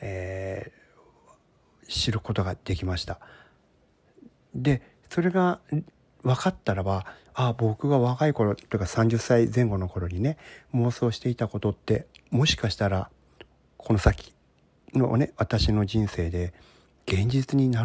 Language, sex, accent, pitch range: Japanese, male, native, 95-135 Hz